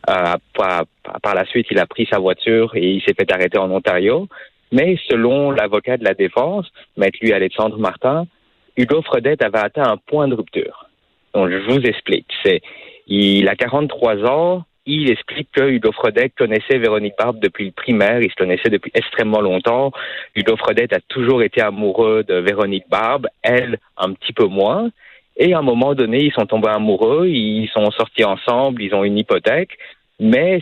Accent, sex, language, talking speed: French, male, French, 180 wpm